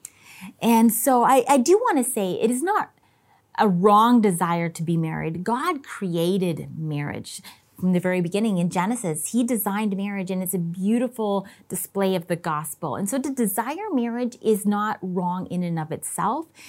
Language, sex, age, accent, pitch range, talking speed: English, female, 30-49, American, 175-235 Hz, 175 wpm